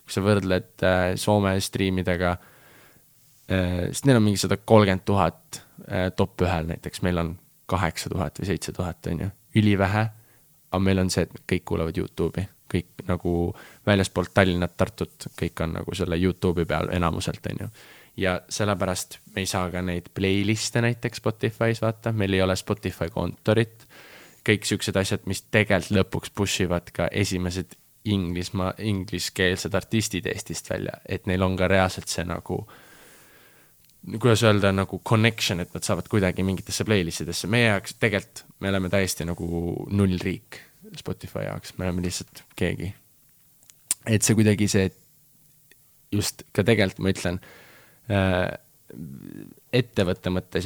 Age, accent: 20-39, Finnish